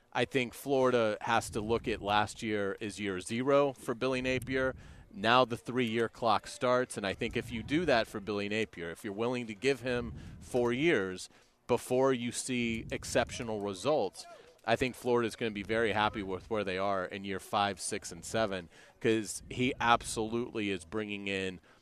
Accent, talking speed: American, 185 wpm